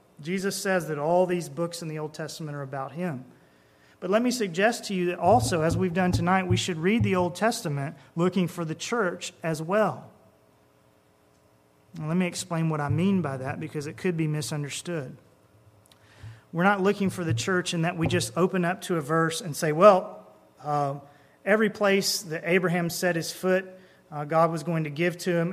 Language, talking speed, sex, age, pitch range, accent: English, 195 wpm, male, 30-49, 145-180 Hz, American